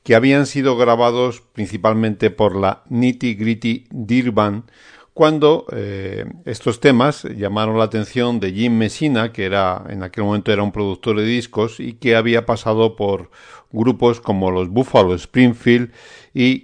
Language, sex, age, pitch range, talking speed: Spanish, male, 50-69, 105-120 Hz, 150 wpm